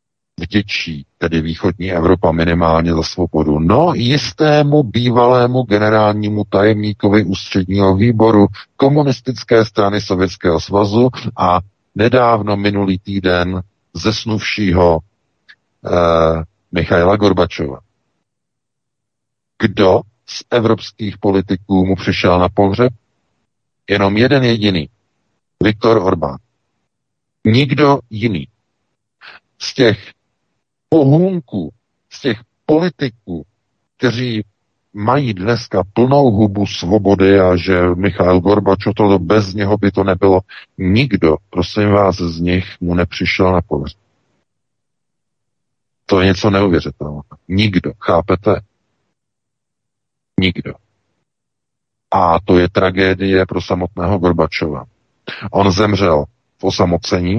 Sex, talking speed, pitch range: male, 95 wpm, 90-110 Hz